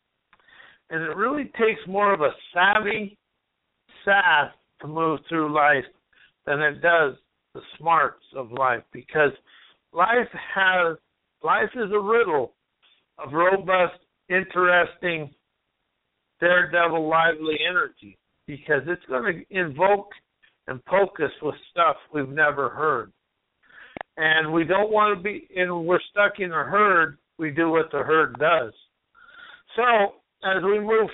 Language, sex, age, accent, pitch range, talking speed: English, male, 60-79, American, 160-205 Hz, 130 wpm